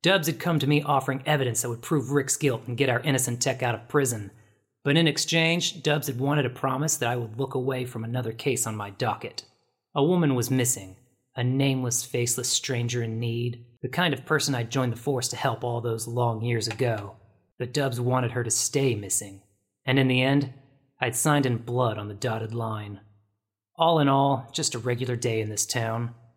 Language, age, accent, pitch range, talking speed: English, 30-49, American, 110-135 Hz, 210 wpm